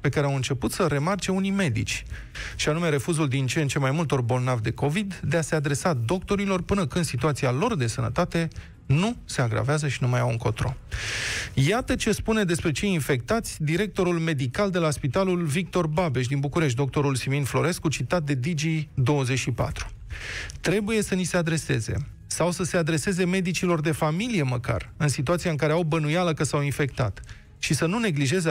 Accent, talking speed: native, 180 wpm